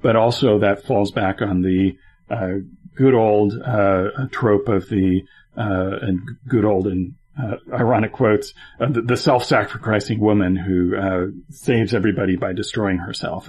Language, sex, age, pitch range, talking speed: English, male, 40-59, 95-115 Hz, 150 wpm